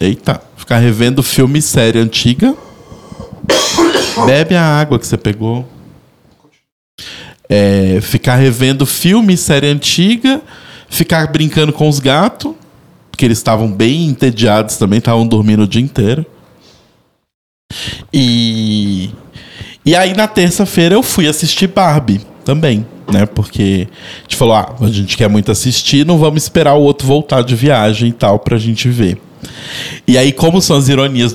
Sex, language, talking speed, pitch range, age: male, Portuguese, 140 wpm, 110-150 Hz, 20-39